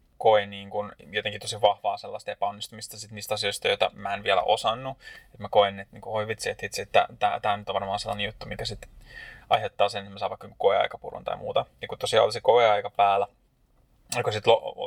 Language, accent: Finnish, native